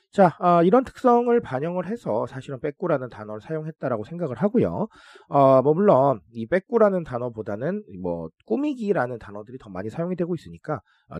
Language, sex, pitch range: Korean, male, 110-180 Hz